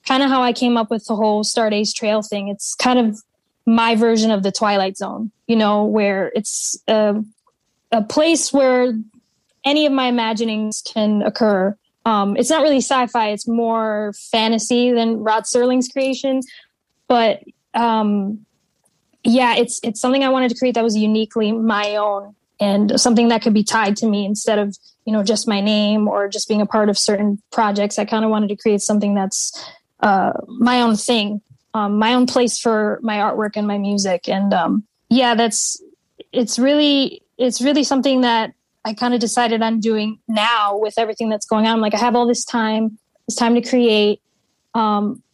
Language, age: English, 10-29